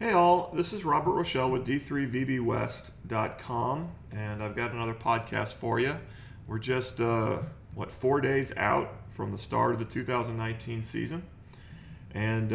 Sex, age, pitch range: male, 40-59, 105-125 Hz